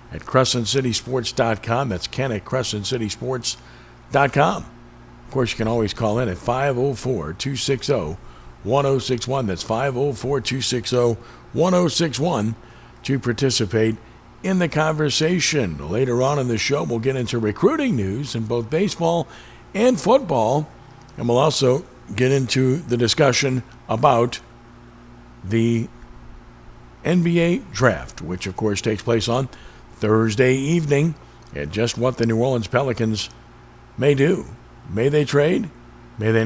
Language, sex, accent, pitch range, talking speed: English, male, American, 110-145 Hz, 115 wpm